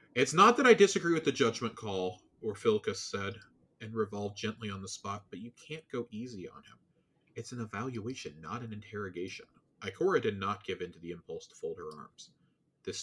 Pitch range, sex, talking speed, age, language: 100-135 Hz, male, 200 wpm, 30-49, English